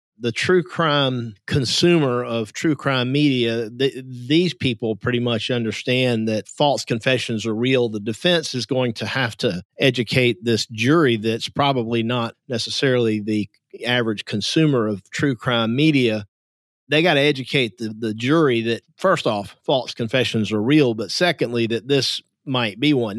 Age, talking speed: 50-69, 155 wpm